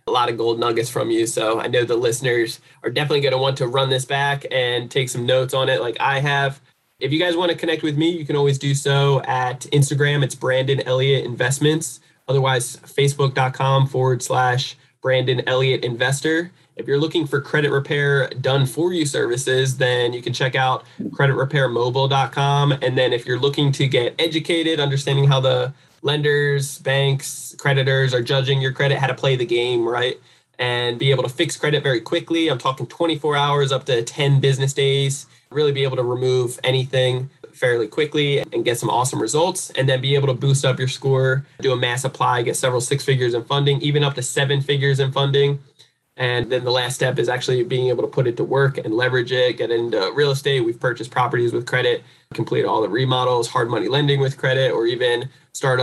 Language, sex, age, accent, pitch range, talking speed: English, male, 20-39, American, 125-140 Hz, 205 wpm